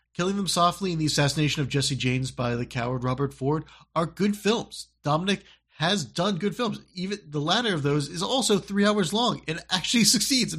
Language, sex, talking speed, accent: English, male, 205 wpm, American